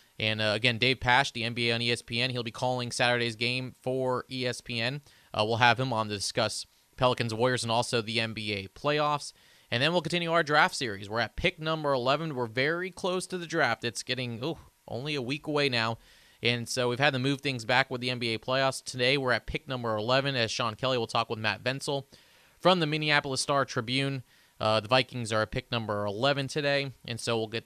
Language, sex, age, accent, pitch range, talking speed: English, male, 30-49, American, 110-135 Hz, 215 wpm